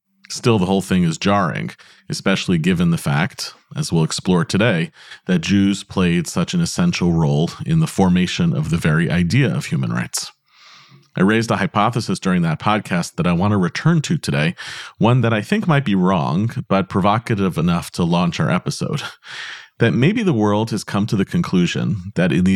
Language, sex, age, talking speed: English, male, 40-59, 190 wpm